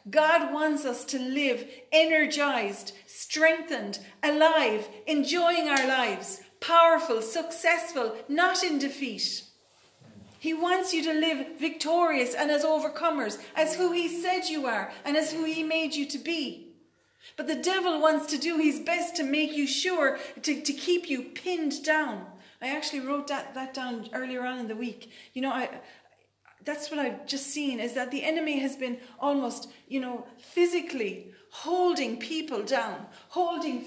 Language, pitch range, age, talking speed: English, 265-335 Hz, 40-59, 160 wpm